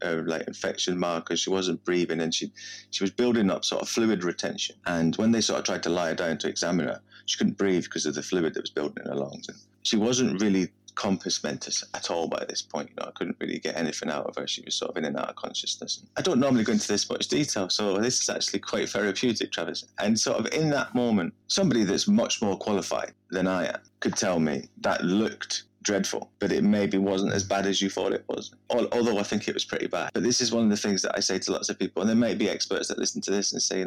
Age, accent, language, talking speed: 30-49, British, English, 270 wpm